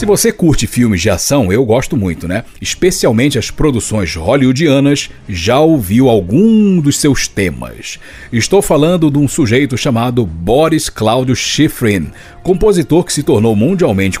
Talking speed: 145 wpm